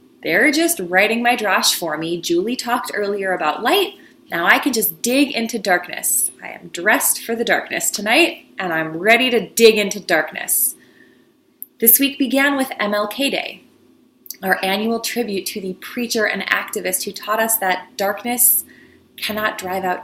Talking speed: 165 wpm